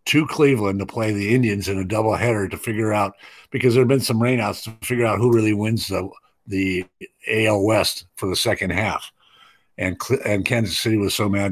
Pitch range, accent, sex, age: 95-115 Hz, American, male, 50-69